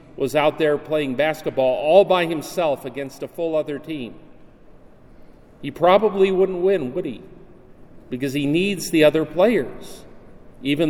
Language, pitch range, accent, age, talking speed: English, 140-185 Hz, American, 40-59, 145 wpm